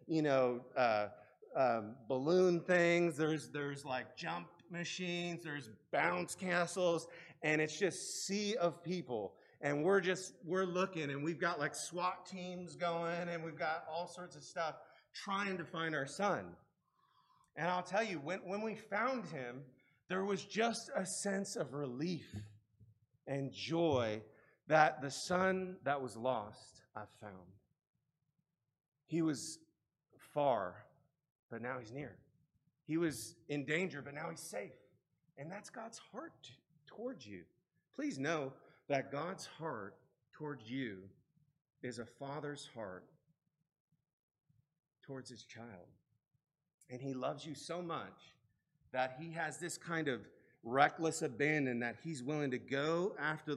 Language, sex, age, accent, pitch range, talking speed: English, male, 30-49, American, 135-175 Hz, 140 wpm